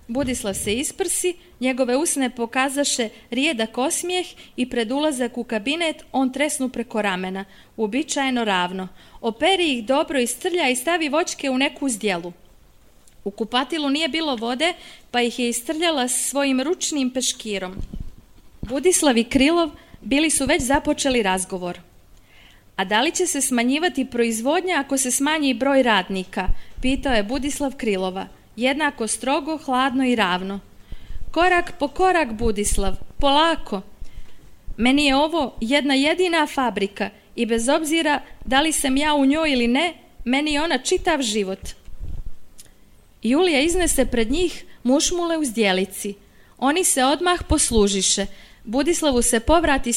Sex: female